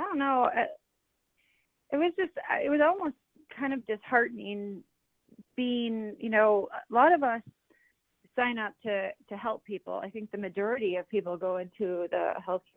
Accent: American